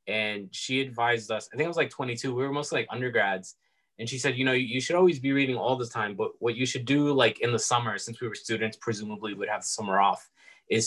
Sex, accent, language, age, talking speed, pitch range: male, American, English, 20-39, 260 wpm, 105-130 Hz